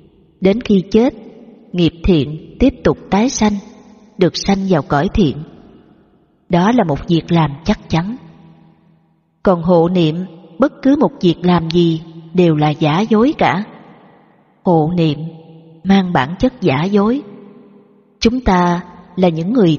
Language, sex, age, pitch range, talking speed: Vietnamese, female, 20-39, 165-220 Hz, 145 wpm